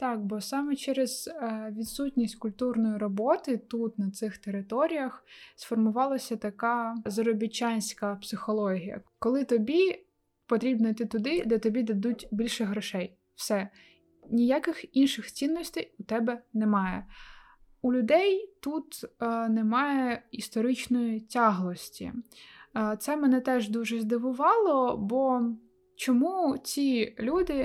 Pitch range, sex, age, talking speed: 215-255 Hz, female, 20-39, 100 wpm